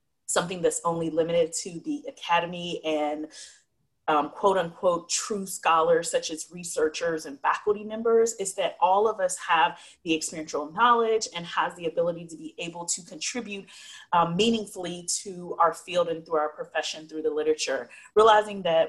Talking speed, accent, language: 160 wpm, American, English